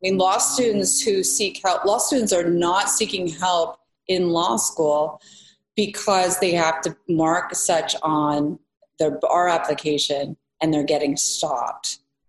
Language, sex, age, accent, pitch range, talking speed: English, female, 30-49, American, 150-195 Hz, 145 wpm